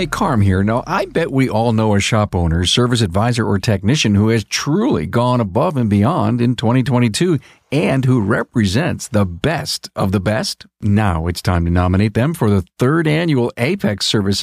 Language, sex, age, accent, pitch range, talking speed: English, male, 50-69, American, 95-125 Hz, 185 wpm